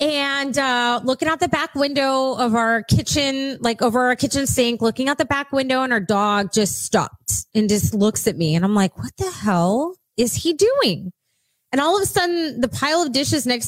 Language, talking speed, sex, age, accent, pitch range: English, 215 wpm, female, 20-39, American, 225-295 Hz